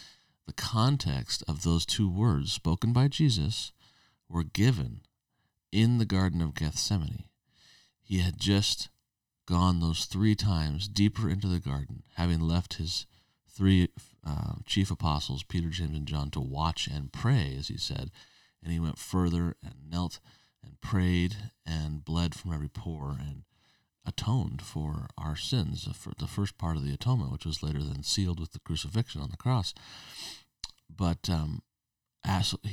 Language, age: English, 40-59